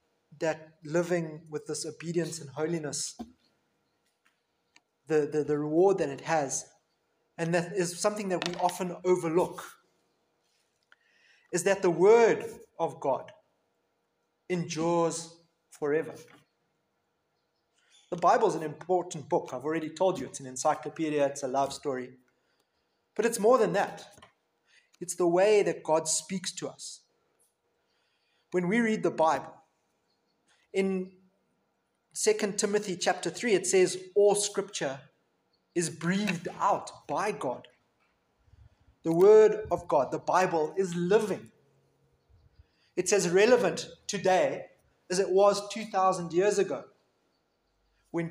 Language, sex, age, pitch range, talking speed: English, male, 30-49, 155-195 Hz, 120 wpm